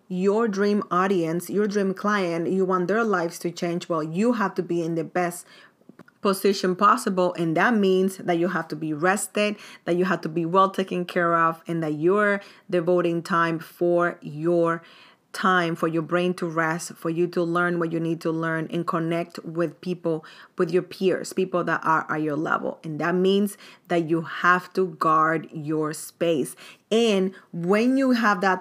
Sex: female